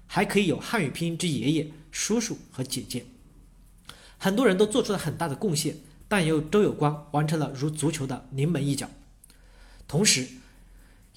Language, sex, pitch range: Chinese, male, 140-200 Hz